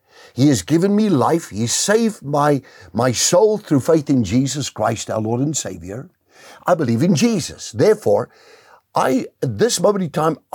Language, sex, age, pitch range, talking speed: English, male, 60-79, 125-175 Hz, 165 wpm